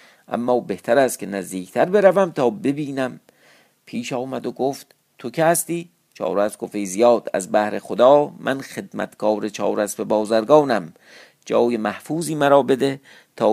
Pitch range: 110-150 Hz